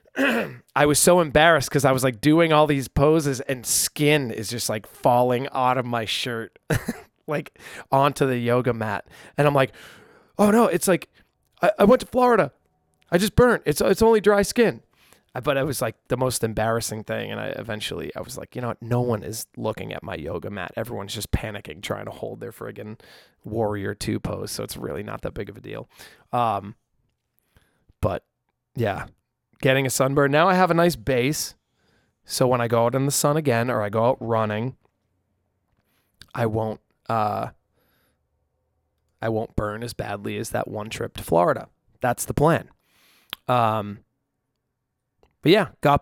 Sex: male